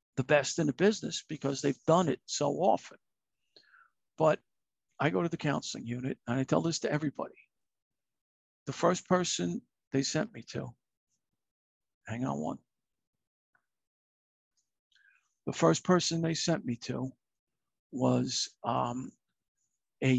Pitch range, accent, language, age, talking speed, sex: 130-180 Hz, American, English, 50-69, 130 wpm, male